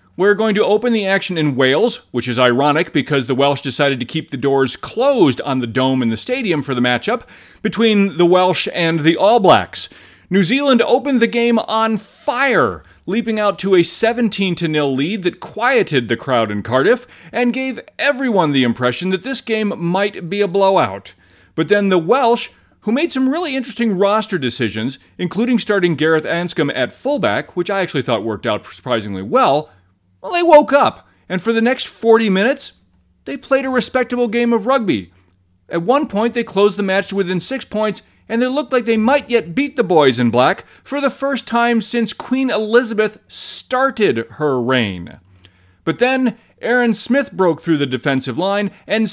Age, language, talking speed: 30-49, English, 185 wpm